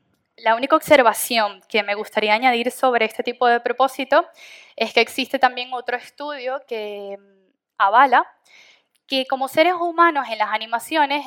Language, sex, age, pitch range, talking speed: Spanish, female, 10-29, 235-300 Hz, 145 wpm